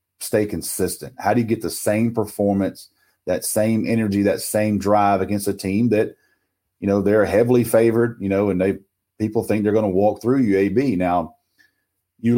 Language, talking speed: English, 190 wpm